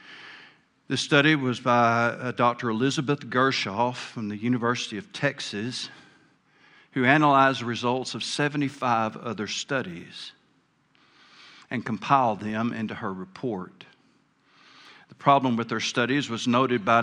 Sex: male